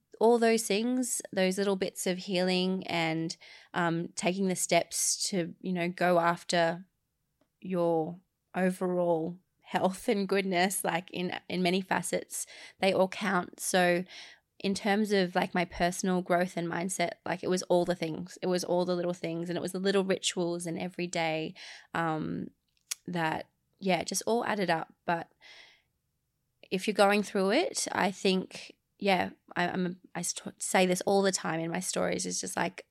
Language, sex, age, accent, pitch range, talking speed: English, female, 20-39, Australian, 175-205 Hz, 170 wpm